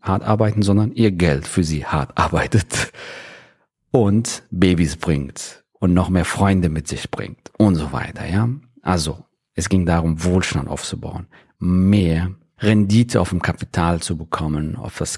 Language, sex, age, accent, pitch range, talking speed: German, male, 40-59, German, 90-110 Hz, 150 wpm